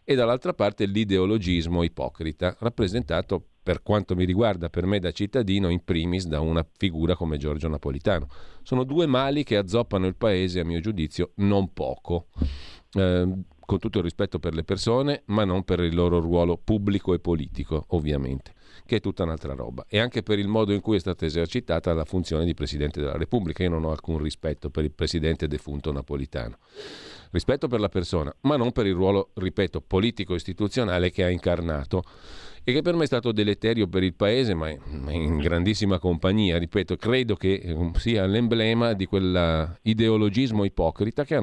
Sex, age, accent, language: male, 40-59, native, Italian